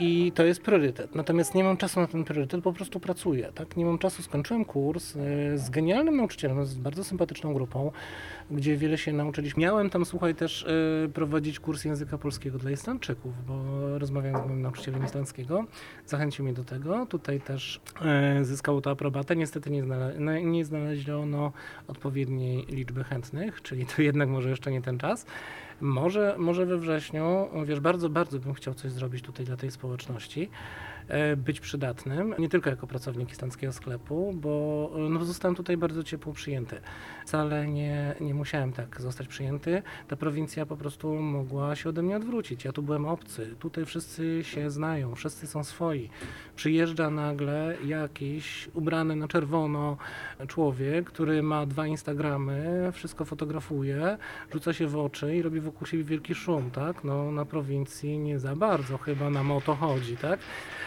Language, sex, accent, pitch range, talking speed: Polish, male, native, 140-165 Hz, 165 wpm